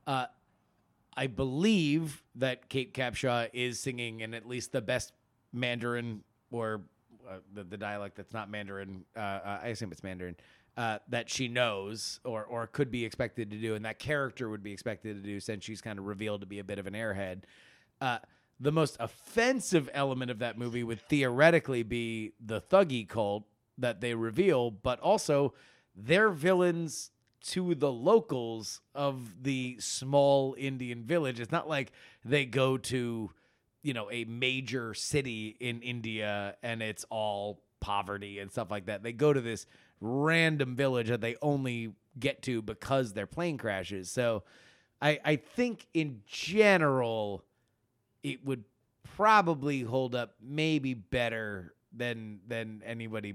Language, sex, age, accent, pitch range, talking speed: English, male, 30-49, American, 110-135 Hz, 155 wpm